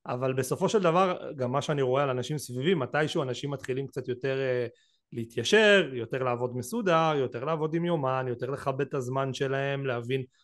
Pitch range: 125-165 Hz